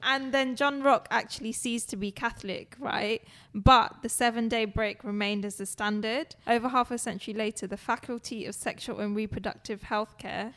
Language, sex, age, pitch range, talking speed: English, female, 10-29, 195-225 Hz, 175 wpm